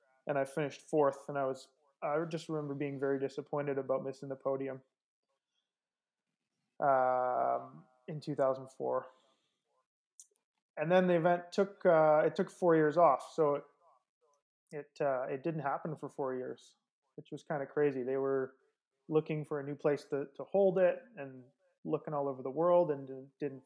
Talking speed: 170 wpm